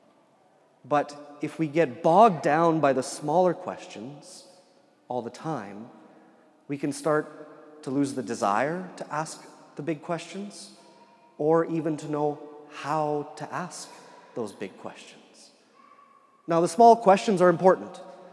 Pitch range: 140-175 Hz